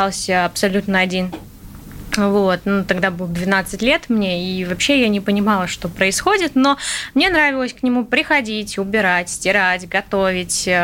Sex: female